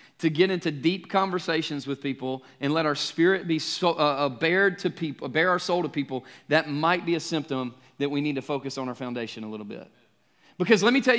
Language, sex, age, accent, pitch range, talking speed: English, male, 30-49, American, 165-230 Hz, 225 wpm